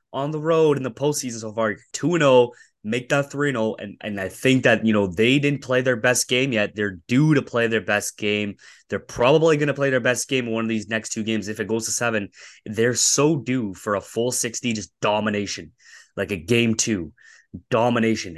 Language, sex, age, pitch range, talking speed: English, male, 20-39, 105-125 Hz, 220 wpm